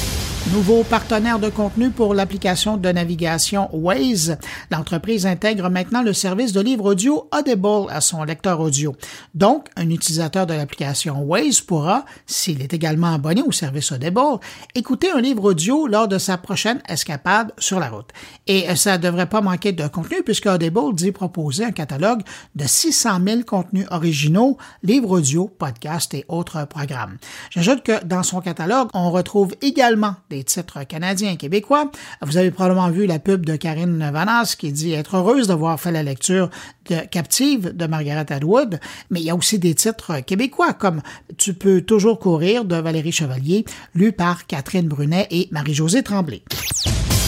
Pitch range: 165-210 Hz